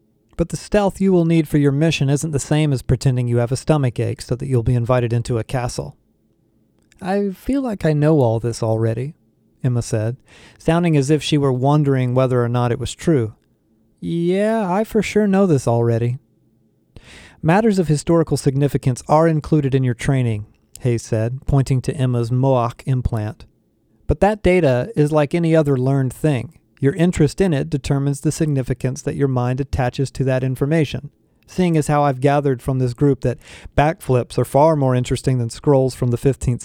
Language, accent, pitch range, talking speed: English, American, 120-150 Hz, 185 wpm